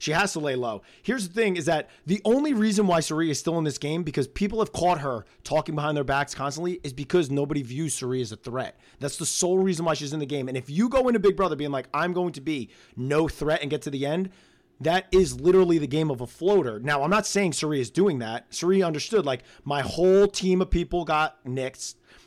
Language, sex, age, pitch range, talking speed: English, male, 30-49, 140-180 Hz, 250 wpm